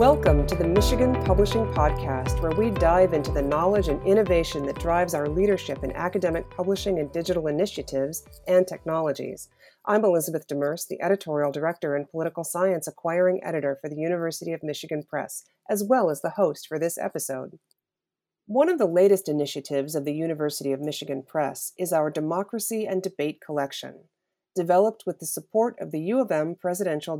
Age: 40-59